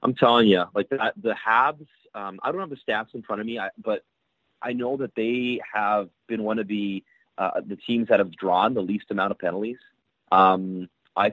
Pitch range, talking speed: 95-130 Hz, 215 wpm